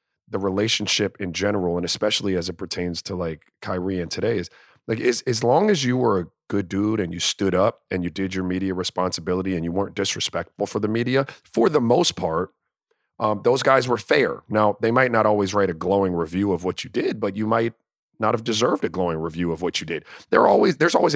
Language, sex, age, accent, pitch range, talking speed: English, male, 30-49, American, 95-110 Hz, 230 wpm